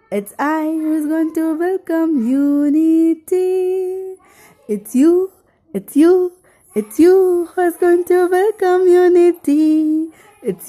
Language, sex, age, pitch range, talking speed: English, female, 20-39, 295-355 Hz, 105 wpm